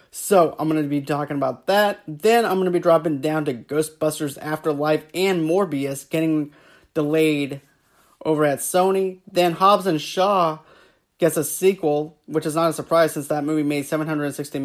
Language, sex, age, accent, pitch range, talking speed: English, male, 30-49, American, 145-170 Hz, 170 wpm